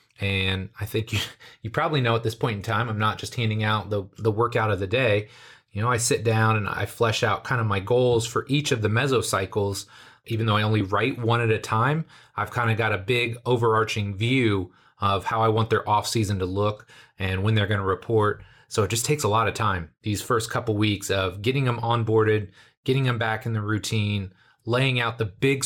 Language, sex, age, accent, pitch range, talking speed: English, male, 30-49, American, 105-125 Hz, 230 wpm